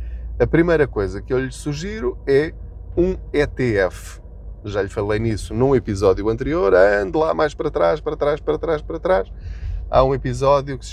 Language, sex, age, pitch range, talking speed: Portuguese, male, 20-39, 85-135 Hz, 180 wpm